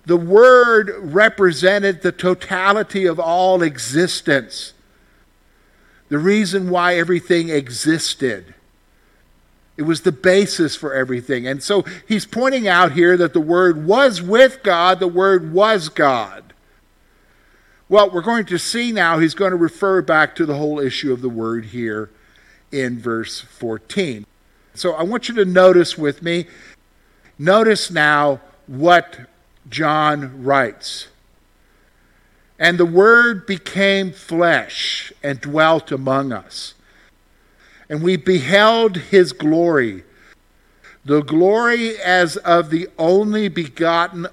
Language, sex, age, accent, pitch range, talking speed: English, male, 50-69, American, 145-195 Hz, 125 wpm